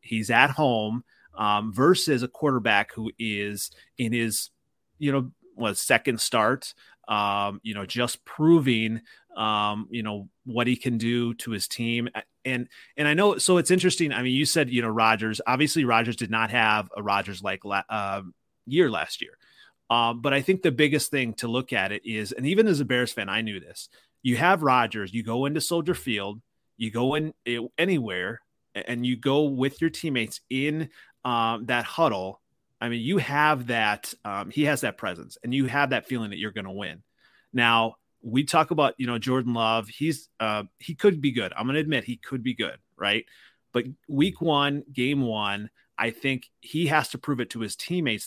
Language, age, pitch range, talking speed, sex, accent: English, 30-49, 110-145 Hz, 200 wpm, male, American